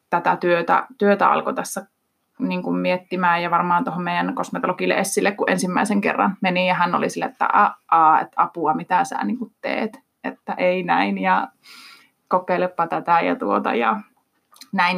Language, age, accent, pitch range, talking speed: Finnish, 20-39, native, 180-230 Hz, 150 wpm